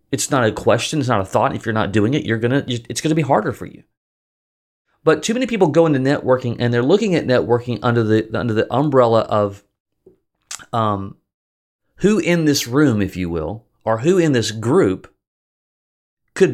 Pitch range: 115-155 Hz